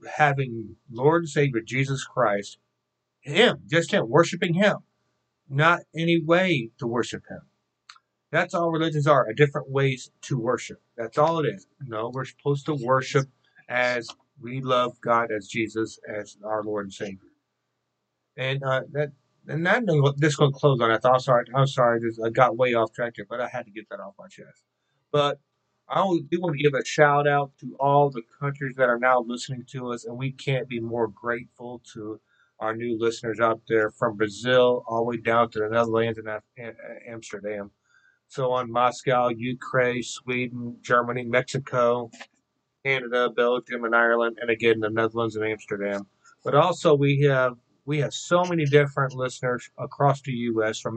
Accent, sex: American, male